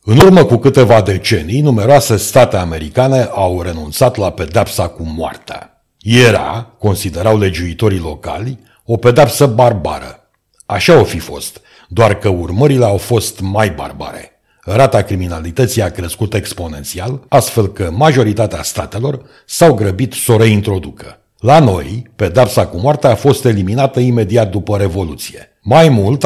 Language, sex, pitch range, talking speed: Romanian, male, 95-130 Hz, 135 wpm